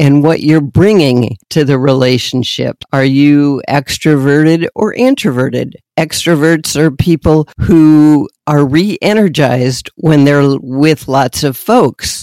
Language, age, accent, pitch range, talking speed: English, 50-69, American, 130-155 Hz, 120 wpm